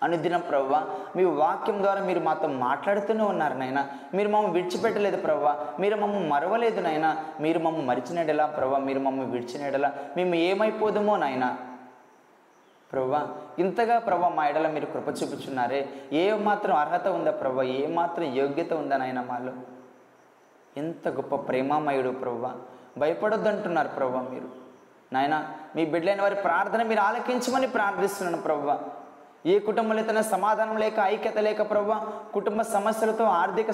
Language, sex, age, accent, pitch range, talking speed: Telugu, male, 20-39, native, 140-210 Hz, 135 wpm